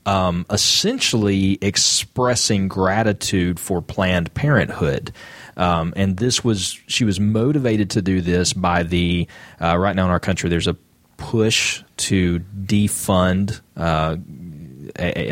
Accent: American